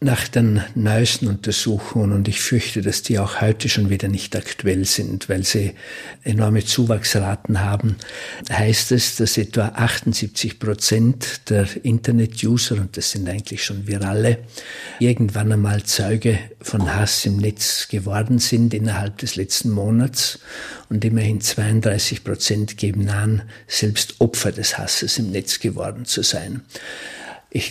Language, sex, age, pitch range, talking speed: German, male, 60-79, 105-115 Hz, 140 wpm